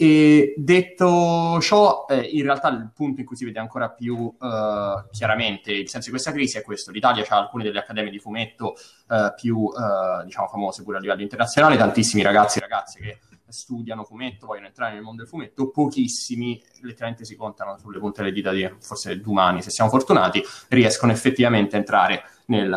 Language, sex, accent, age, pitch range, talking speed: Italian, male, native, 20-39, 105-130 Hz, 185 wpm